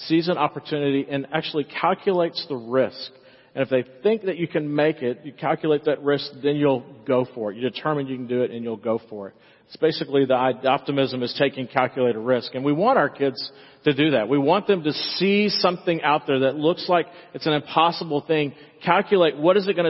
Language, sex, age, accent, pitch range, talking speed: English, male, 40-59, American, 130-155 Hz, 220 wpm